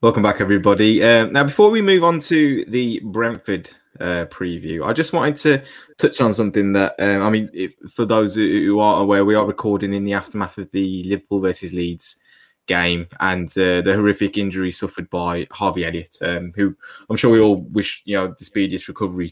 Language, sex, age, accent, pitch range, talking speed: English, male, 20-39, British, 95-115 Hz, 200 wpm